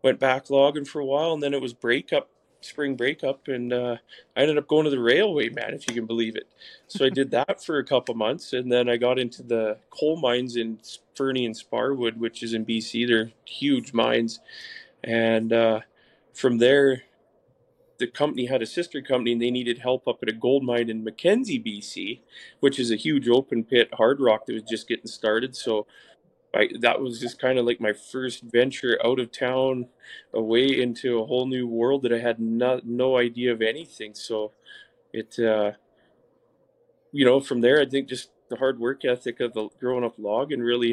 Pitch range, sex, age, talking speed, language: 115-130 Hz, male, 20-39, 205 wpm, English